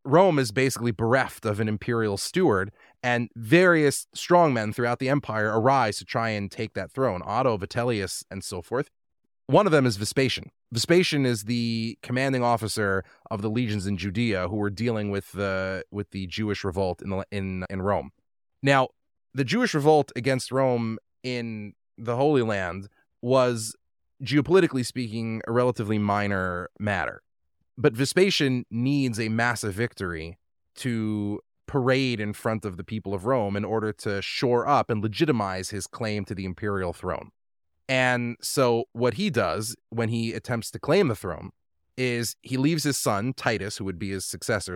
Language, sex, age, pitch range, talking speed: English, male, 30-49, 100-125 Hz, 165 wpm